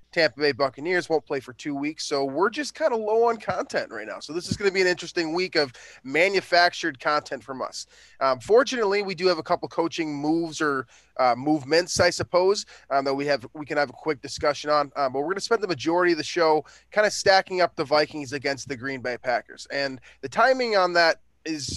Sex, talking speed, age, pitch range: male, 235 wpm, 20-39, 140-175 Hz